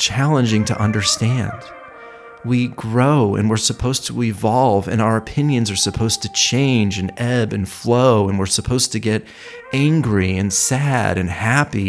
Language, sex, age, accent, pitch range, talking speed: English, male, 40-59, American, 110-140 Hz, 155 wpm